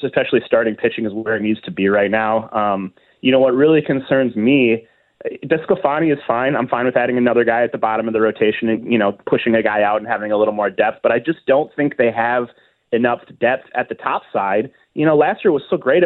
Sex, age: male, 30-49